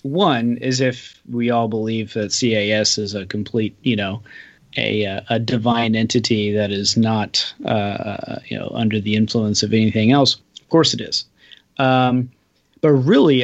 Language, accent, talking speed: English, American, 160 wpm